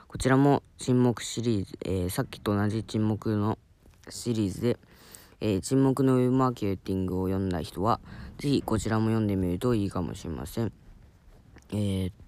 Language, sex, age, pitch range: Japanese, female, 20-39, 95-125 Hz